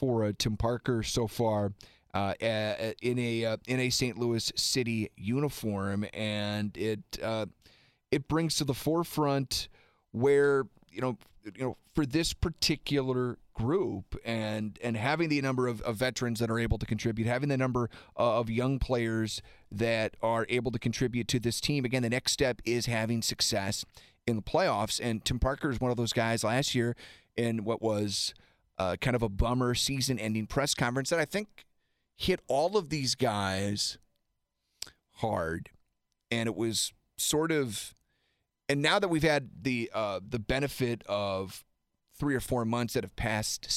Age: 30-49